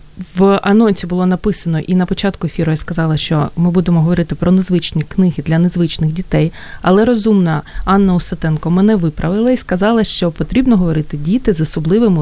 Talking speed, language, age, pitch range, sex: 165 wpm, Ukrainian, 30-49, 155-195 Hz, female